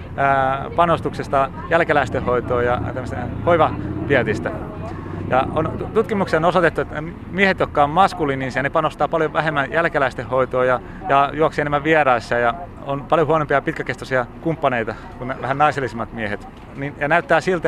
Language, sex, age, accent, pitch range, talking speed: Finnish, male, 30-49, native, 125-150 Hz, 130 wpm